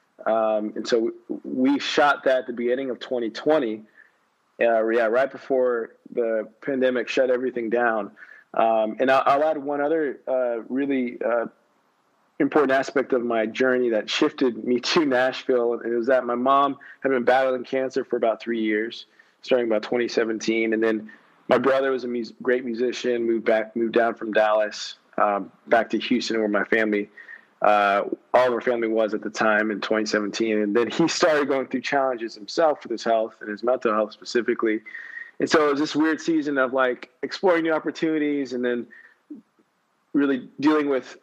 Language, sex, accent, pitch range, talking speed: English, male, American, 115-135 Hz, 180 wpm